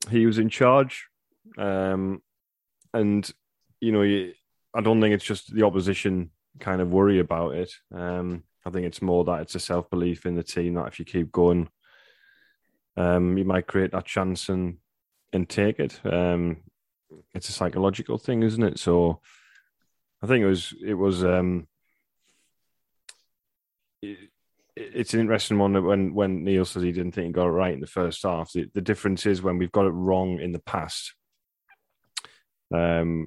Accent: British